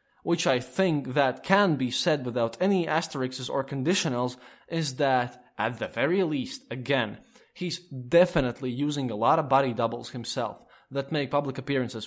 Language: English